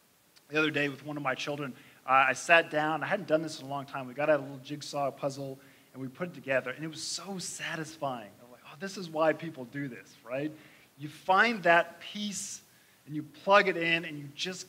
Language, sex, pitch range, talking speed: English, male, 135-175 Hz, 240 wpm